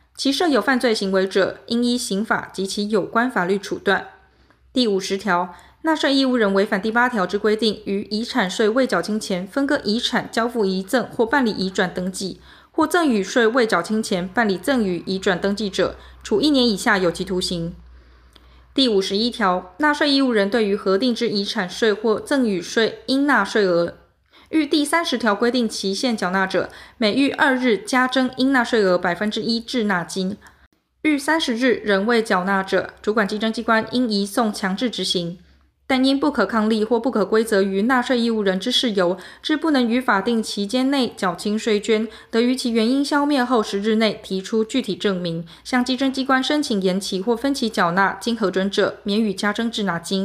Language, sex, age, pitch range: Chinese, female, 20-39, 195-250 Hz